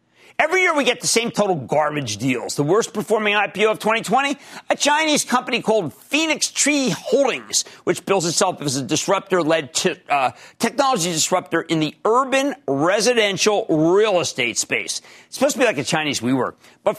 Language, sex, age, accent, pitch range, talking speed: English, male, 50-69, American, 145-220 Hz, 165 wpm